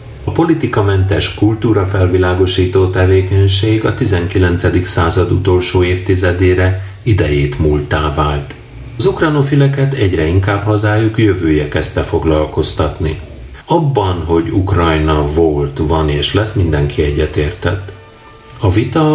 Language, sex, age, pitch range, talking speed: Hungarian, male, 40-59, 80-110 Hz, 100 wpm